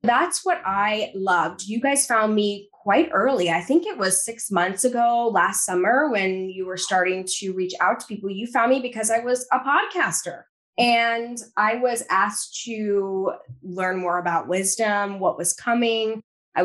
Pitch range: 180-235 Hz